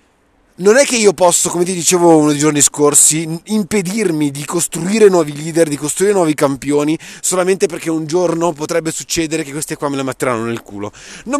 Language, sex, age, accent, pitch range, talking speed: Italian, male, 30-49, native, 150-195 Hz, 190 wpm